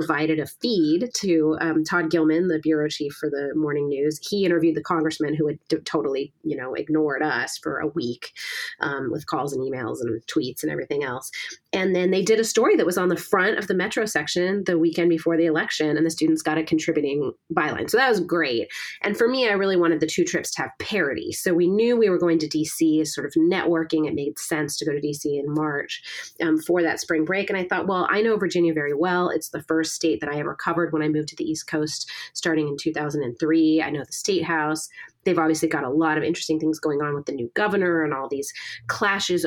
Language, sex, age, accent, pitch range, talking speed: English, female, 30-49, American, 155-180 Hz, 235 wpm